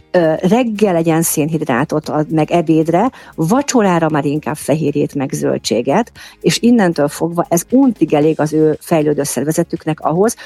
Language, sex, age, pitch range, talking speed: Hungarian, female, 50-69, 150-175 Hz, 125 wpm